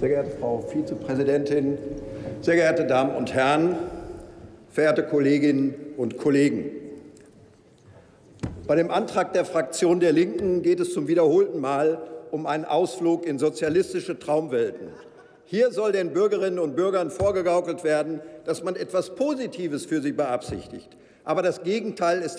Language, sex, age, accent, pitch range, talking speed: German, male, 50-69, German, 155-225 Hz, 135 wpm